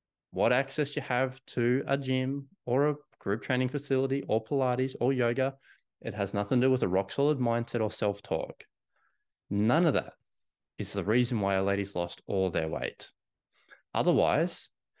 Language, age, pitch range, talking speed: English, 20-39, 100-140 Hz, 165 wpm